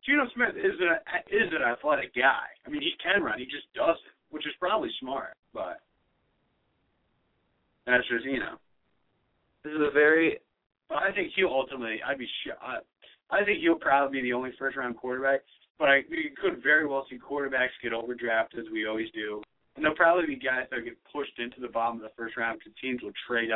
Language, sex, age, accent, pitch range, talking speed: English, male, 30-49, American, 115-170 Hz, 205 wpm